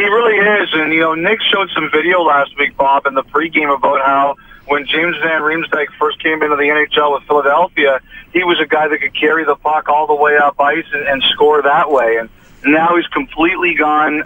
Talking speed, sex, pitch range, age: 225 wpm, male, 145-170 Hz, 40-59